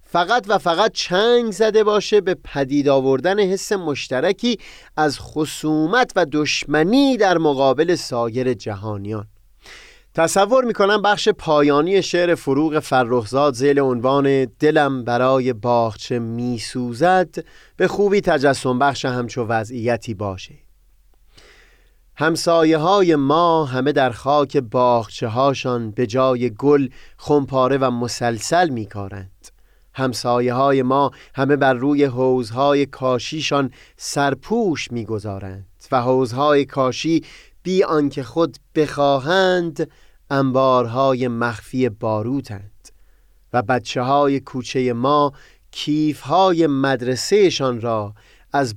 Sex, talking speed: male, 105 wpm